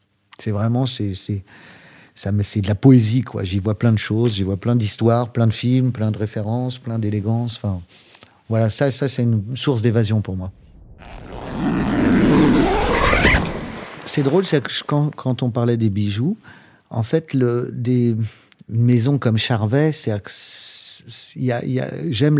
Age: 50-69